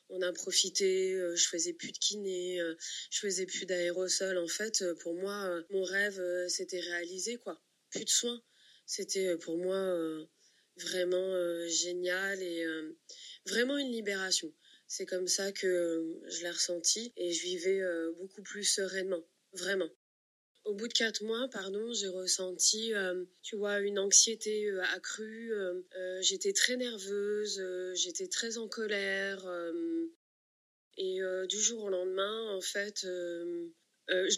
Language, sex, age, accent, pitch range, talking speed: French, female, 20-39, French, 180-210 Hz, 130 wpm